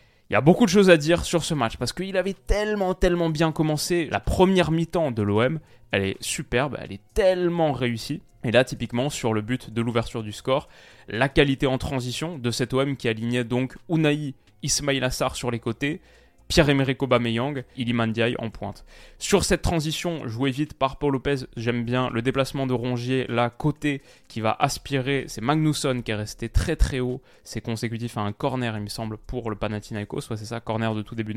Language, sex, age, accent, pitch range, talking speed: French, male, 20-39, French, 120-150 Hz, 205 wpm